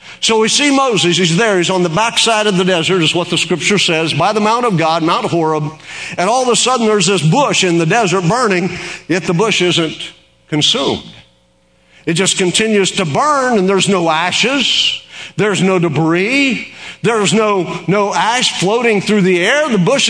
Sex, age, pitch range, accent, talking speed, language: male, 50-69, 170-235 Hz, American, 195 wpm, English